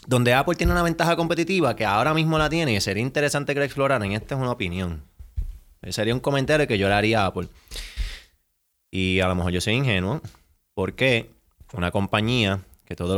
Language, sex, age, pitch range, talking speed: Spanish, male, 20-39, 95-125 Hz, 190 wpm